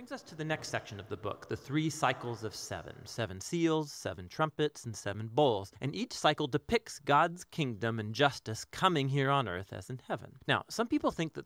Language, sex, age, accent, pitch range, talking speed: English, male, 30-49, American, 120-165 Hz, 210 wpm